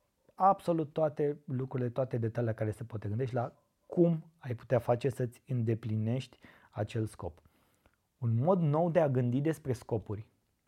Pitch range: 110-130 Hz